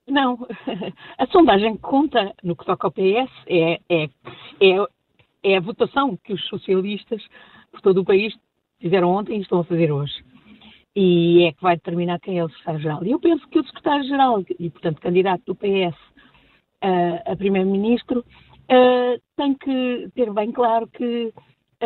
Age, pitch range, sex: 50-69, 195-270 Hz, female